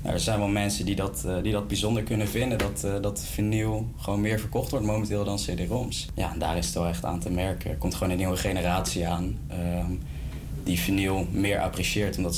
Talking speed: 200 wpm